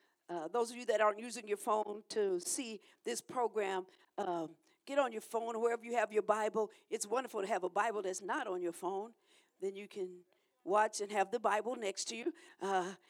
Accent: American